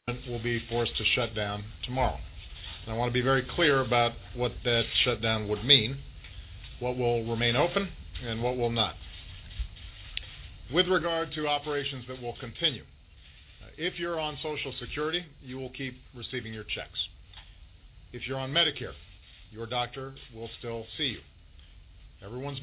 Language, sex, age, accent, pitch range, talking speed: English, male, 50-69, American, 100-130 Hz, 150 wpm